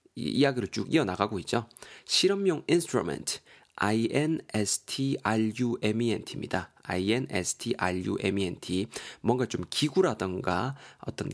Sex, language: male, Korean